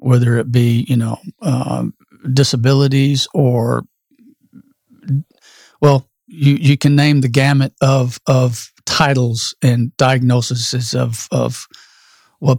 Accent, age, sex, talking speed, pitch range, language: American, 50-69, male, 110 wpm, 120-140 Hz, English